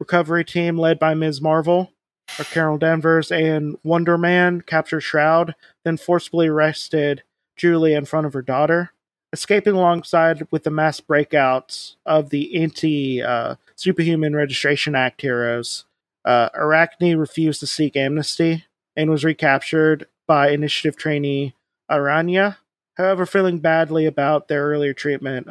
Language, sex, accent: English, male, American